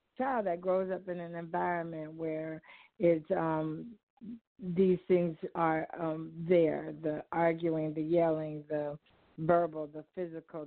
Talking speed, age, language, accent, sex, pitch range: 130 wpm, 50-69, English, American, female, 165-195 Hz